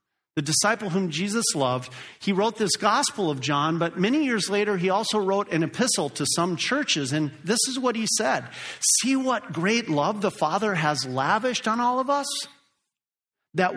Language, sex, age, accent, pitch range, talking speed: English, male, 50-69, American, 130-195 Hz, 185 wpm